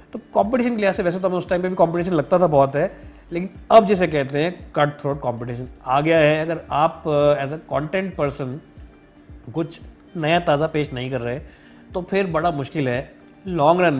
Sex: male